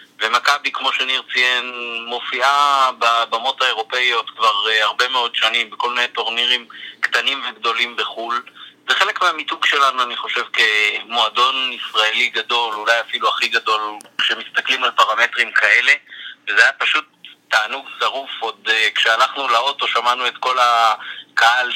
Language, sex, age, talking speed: Hebrew, male, 30-49, 125 wpm